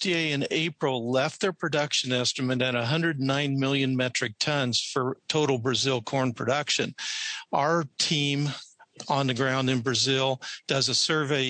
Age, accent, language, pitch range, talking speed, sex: 50-69, American, English, 130-150 Hz, 135 wpm, male